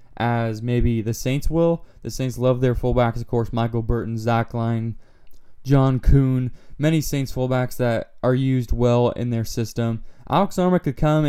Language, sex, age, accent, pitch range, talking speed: English, male, 20-39, American, 120-135 Hz, 170 wpm